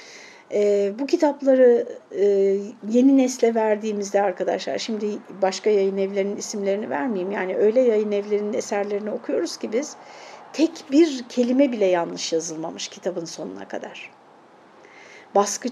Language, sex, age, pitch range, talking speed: Turkish, female, 60-79, 205-255 Hz, 120 wpm